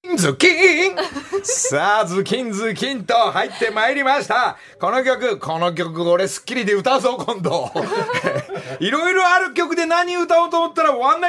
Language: Japanese